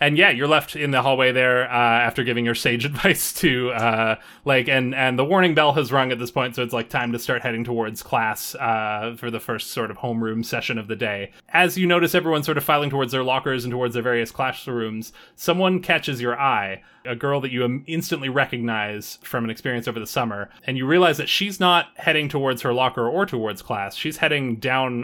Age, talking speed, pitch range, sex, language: 20-39, 225 wpm, 115-140 Hz, male, English